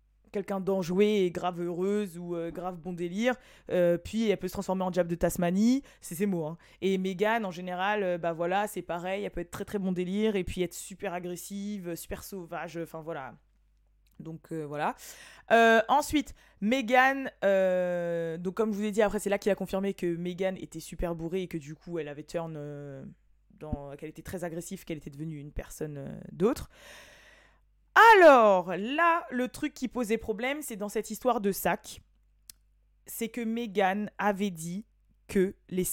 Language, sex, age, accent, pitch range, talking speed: French, female, 20-39, French, 175-215 Hz, 190 wpm